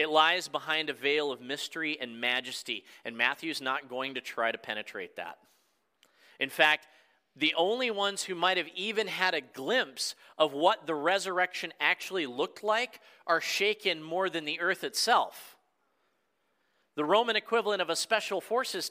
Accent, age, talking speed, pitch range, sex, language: American, 40-59, 160 wpm, 150-195 Hz, male, English